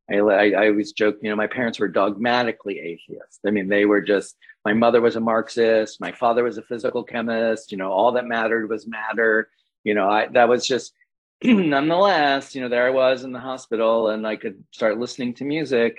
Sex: male